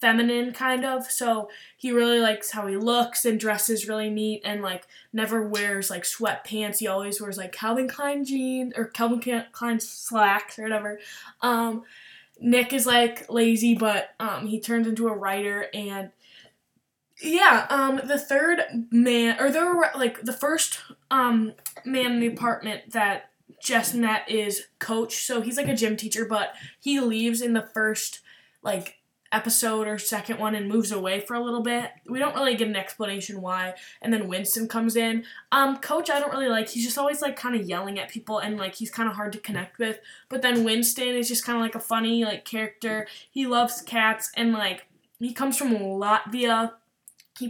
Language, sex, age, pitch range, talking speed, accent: English, female, 10-29, 210-245 Hz, 190 wpm, American